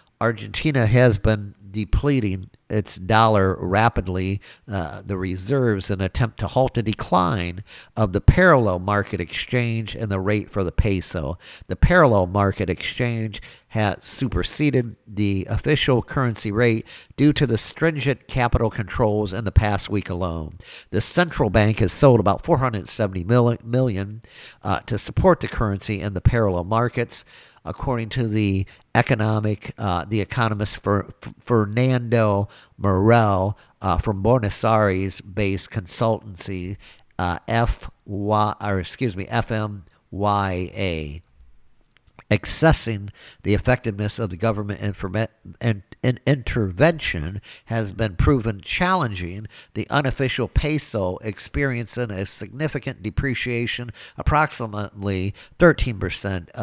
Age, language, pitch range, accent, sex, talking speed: 50-69, English, 95-120 Hz, American, male, 120 wpm